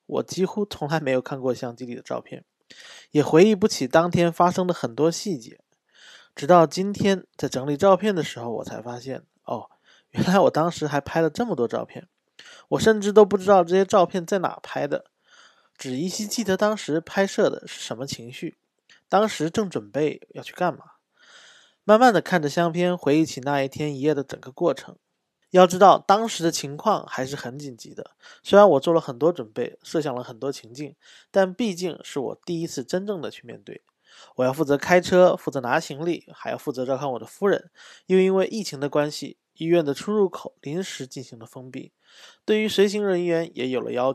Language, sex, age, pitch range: Chinese, male, 20-39, 140-190 Hz